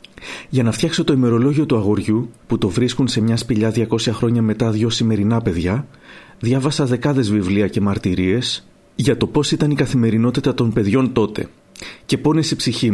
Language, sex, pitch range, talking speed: Greek, male, 110-135 Hz, 170 wpm